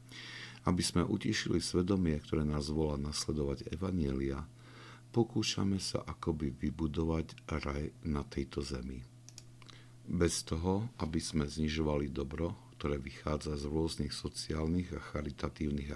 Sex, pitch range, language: male, 75-95 Hz, Slovak